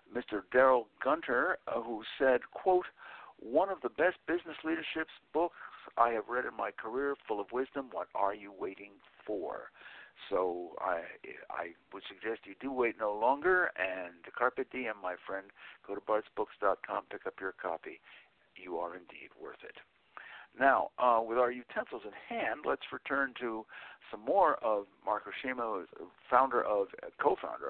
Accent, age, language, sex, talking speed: American, 60-79, English, male, 155 wpm